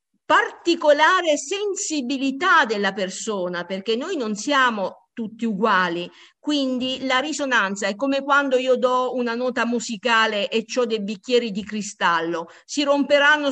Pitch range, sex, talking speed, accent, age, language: 210-280 Hz, female, 130 wpm, native, 50-69, Italian